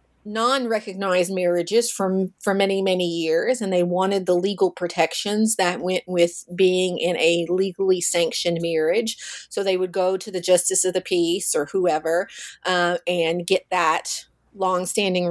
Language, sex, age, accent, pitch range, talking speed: English, female, 30-49, American, 185-235 Hz, 155 wpm